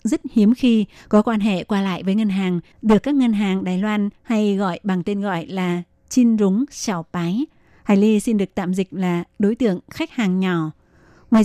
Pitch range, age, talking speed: 195-225 Hz, 20-39, 210 wpm